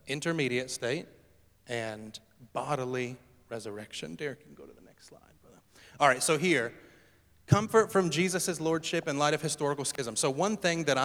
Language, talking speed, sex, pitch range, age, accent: English, 160 wpm, male, 115-150 Hz, 30-49, American